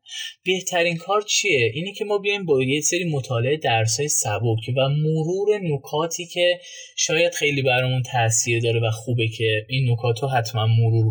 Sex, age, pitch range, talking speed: male, 20-39, 120-165 Hz, 160 wpm